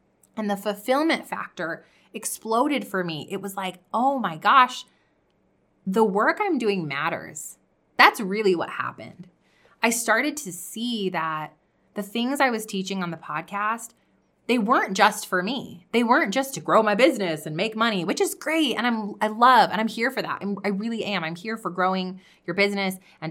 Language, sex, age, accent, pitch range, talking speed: English, female, 20-39, American, 180-225 Hz, 190 wpm